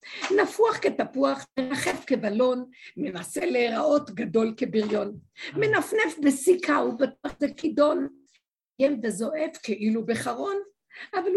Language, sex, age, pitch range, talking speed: Hebrew, female, 50-69, 285-405 Hz, 90 wpm